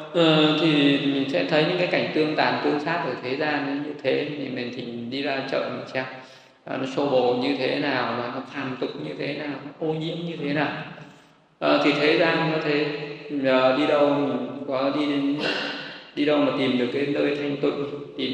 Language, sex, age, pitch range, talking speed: Vietnamese, male, 20-39, 130-150 Hz, 215 wpm